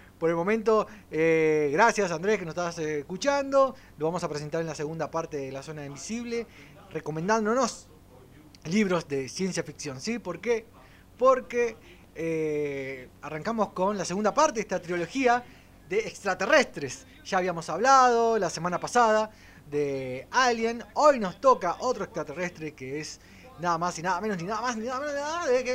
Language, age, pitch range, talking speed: Spanish, 20-39, 150-225 Hz, 165 wpm